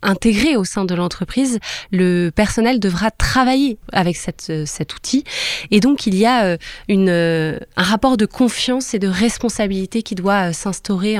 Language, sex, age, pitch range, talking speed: French, female, 20-39, 180-225 Hz, 155 wpm